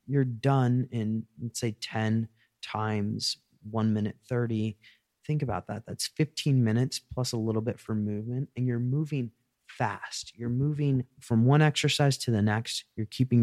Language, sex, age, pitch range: English, male, 30-49, 110-145 Hz